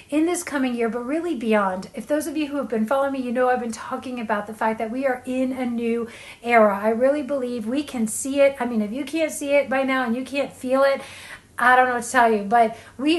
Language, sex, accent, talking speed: English, female, American, 280 wpm